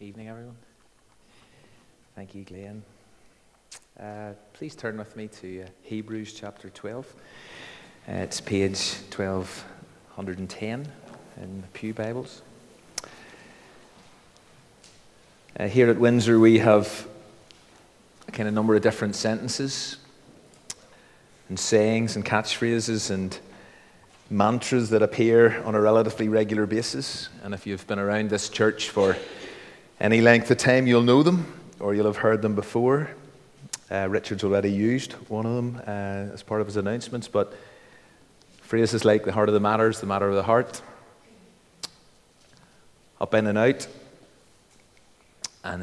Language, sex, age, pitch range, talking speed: English, male, 30-49, 100-115 Hz, 130 wpm